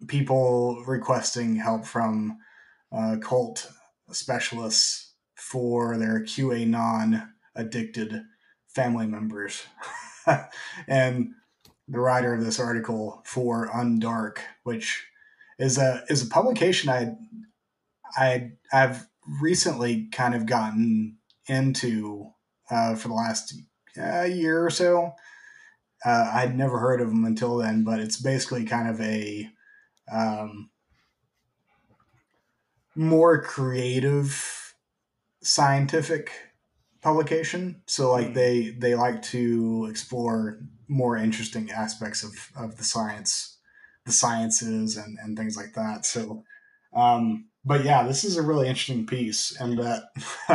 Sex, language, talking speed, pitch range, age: male, English, 115 wpm, 115-145 Hz, 30-49